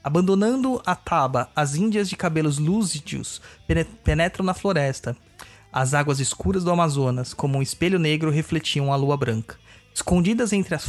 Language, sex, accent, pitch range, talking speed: Portuguese, male, Brazilian, 135-170 Hz, 150 wpm